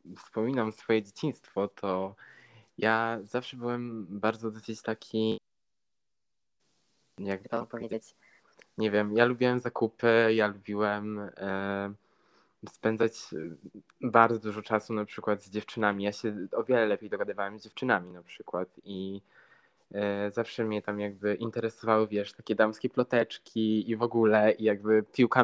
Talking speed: 120 wpm